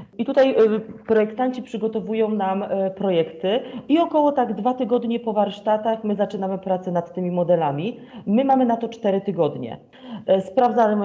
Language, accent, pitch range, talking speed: Polish, native, 190-235 Hz, 140 wpm